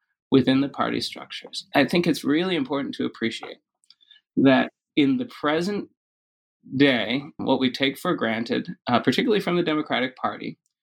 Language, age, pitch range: English, 30-49, 125-170 Hz